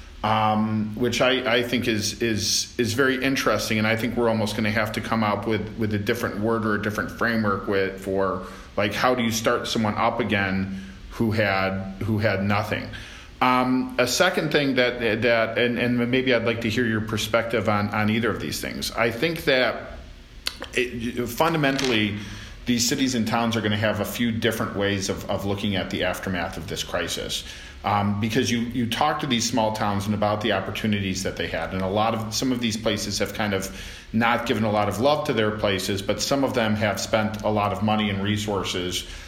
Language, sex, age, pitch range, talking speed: English, male, 40-59, 100-115 Hz, 215 wpm